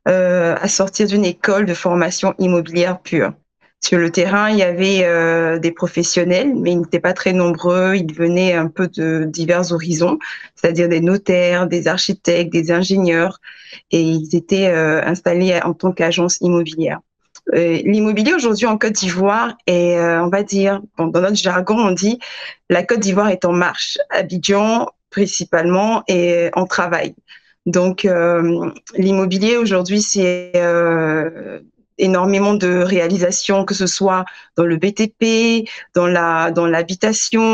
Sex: female